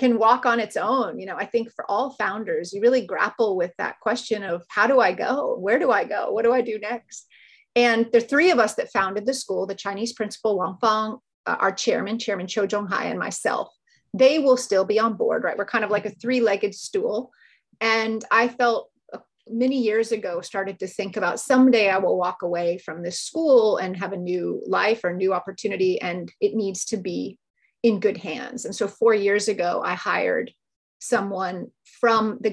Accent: American